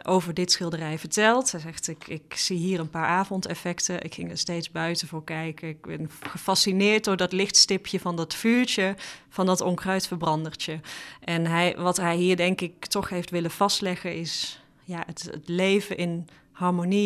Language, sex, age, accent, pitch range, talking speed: Dutch, female, 30-49, Dutch, 170-190 Hz, 170 wpm